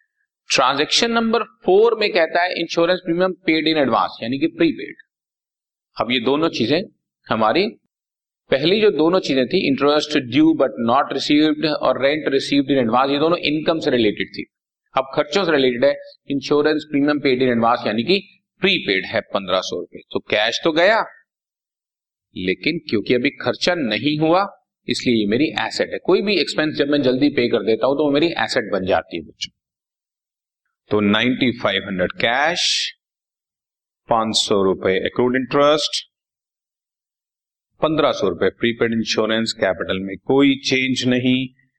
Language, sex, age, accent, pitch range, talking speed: Hindi, male, 40-59, native, 125-175 Hz, 150 wpm